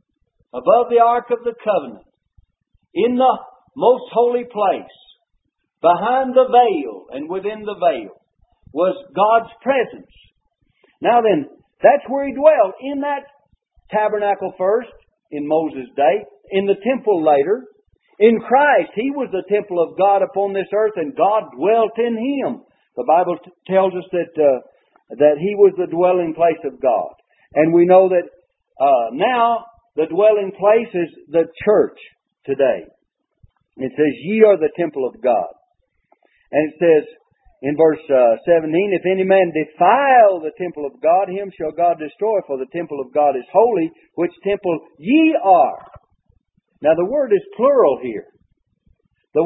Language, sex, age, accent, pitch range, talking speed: English, male, 60-79, American, 170-255 Hz, 150 wpm